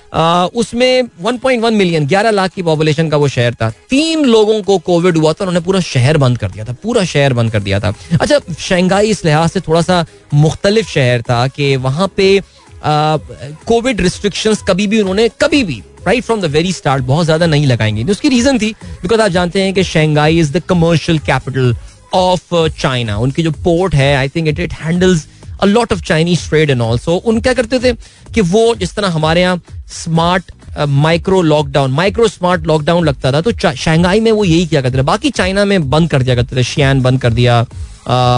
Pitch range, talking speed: 135-190 Hz, 205 wpm